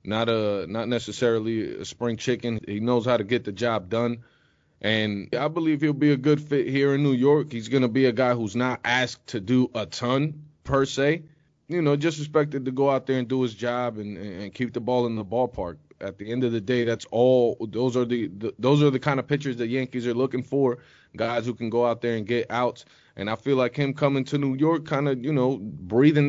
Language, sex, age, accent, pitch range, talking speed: English, male, 20-39, American, 125-155 Hz, 245 wpm